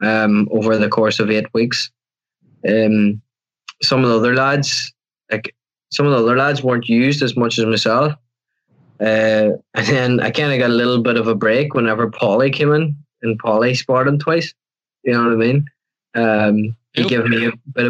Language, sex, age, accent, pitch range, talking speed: English, male, 10-29, Irish, 110-125 Hz, 195 wpm